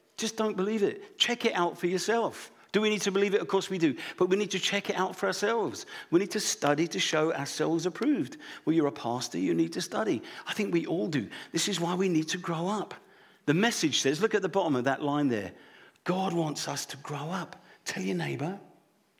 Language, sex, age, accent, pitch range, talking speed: English, male, 50-69, British, 135-200 Hz, 240 wpm